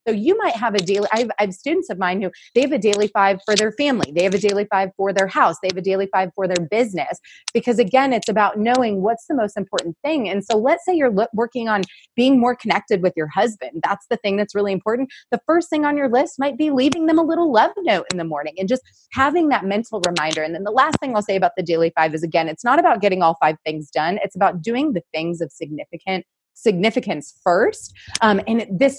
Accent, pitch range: American, 185-245 Hz